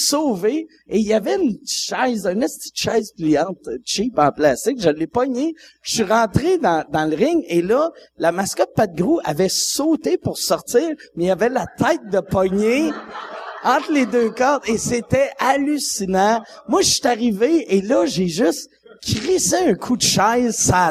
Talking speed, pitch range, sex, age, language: 180 wpm, 185-265 Hz, male, 50-69, French